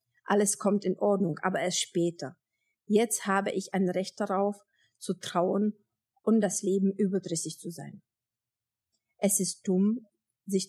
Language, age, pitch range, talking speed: German, 50-69, 160-200 Hz, 140 wpm